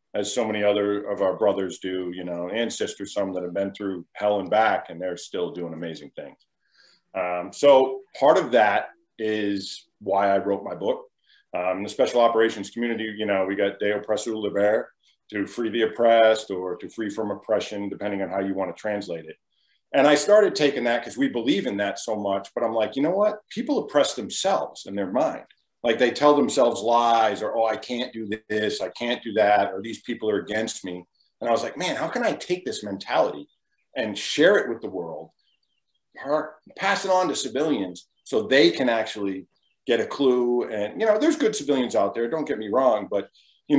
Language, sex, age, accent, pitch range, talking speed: English, male, 40-59, American, 105-150 Hz, 210 wpm